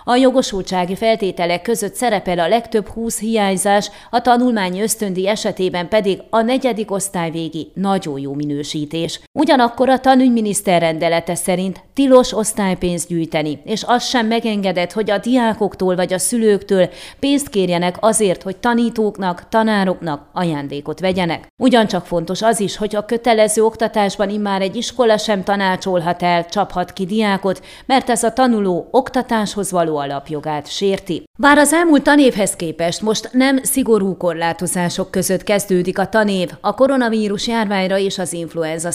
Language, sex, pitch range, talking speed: Hungarian, female, 175-225 Hz, 140 wpm